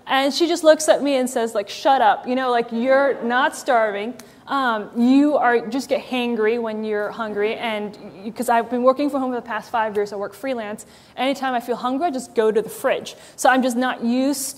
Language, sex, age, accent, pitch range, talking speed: English, female, 20-39, American, 220-265 Hz, 230 wpm